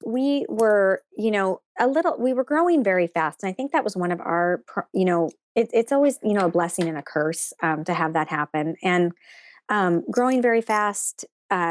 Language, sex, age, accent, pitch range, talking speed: English, female, 30-49, American, 165-205 Hz, 215 wpm